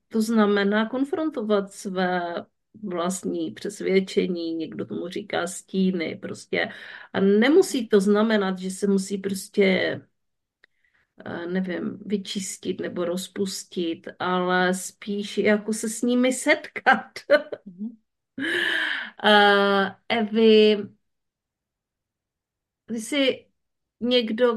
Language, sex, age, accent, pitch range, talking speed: Czech, female, 40-59, native, 200-240 Hz, 80 wpm